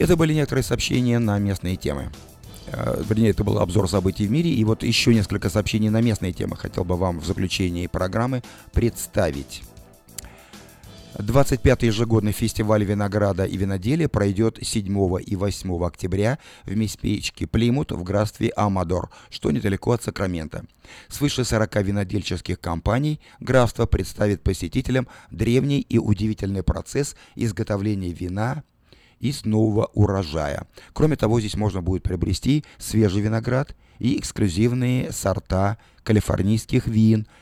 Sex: male